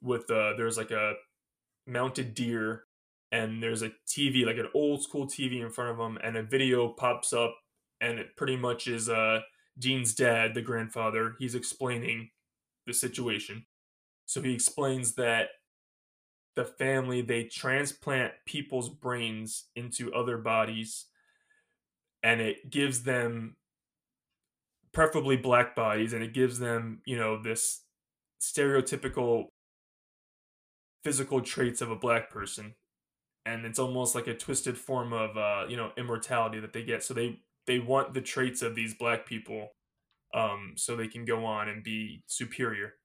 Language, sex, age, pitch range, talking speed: English, male, 20-39, 115-130 Hz, 150 wpm